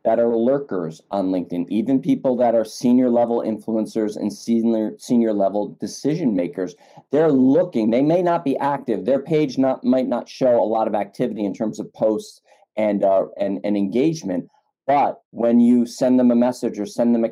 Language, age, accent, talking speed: English, 40-59, American, 190 wpm